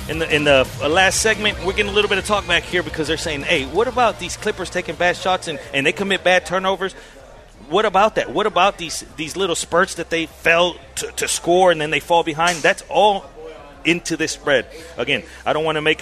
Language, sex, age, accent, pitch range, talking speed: English, male, 40-59, American, 135-170 Hz, 235 wpm